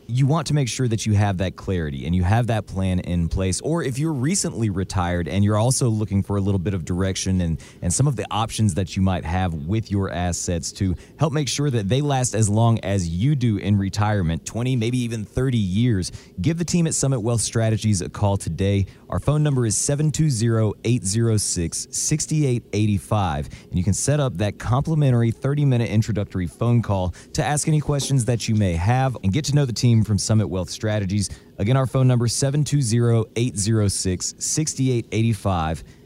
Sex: male